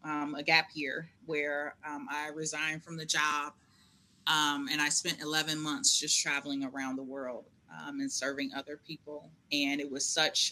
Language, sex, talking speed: English, female, 175 wpm